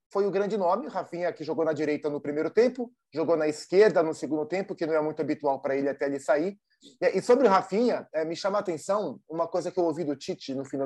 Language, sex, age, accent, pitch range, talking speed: Portuguese, male, 20-39, Brazilian, 155-190 Hz, 250 wpm